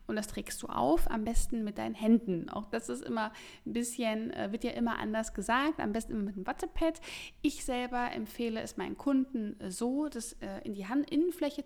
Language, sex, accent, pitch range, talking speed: German, female, German, 210-255 Hz, 210 wpm